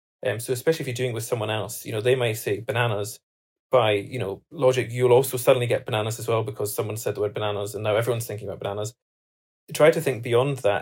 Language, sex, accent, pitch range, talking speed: English, male, British, 110-135 Hz, 245 wpm